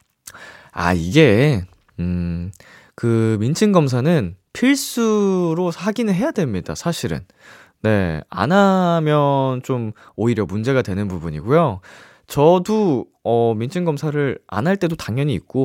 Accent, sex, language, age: native, male, Korean, 20-39